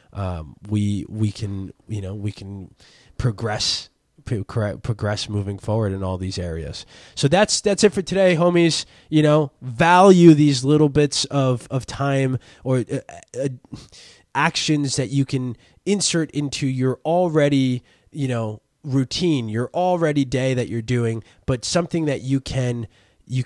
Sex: male